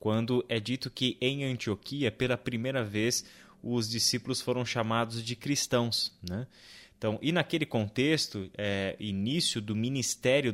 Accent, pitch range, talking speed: Brazilian, 105-135 Hz, 135 wpm